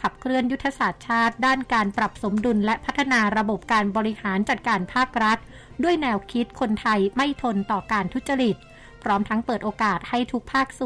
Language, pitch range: Thai, 210-255 Hz